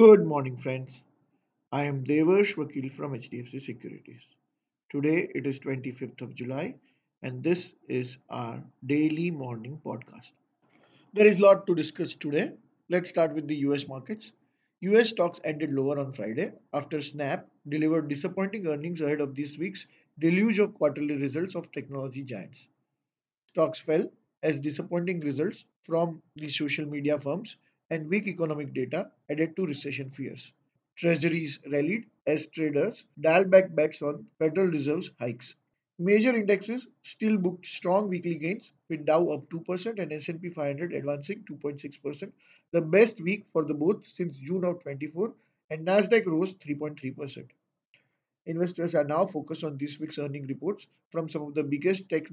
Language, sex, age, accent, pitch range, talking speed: English, male, 50-69, Indian, 145-180 Hz, 155 wpm